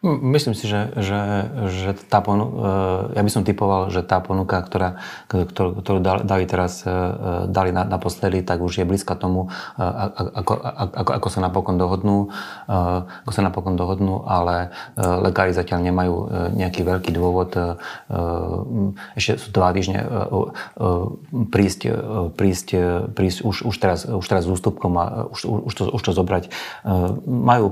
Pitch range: 90-105 Hz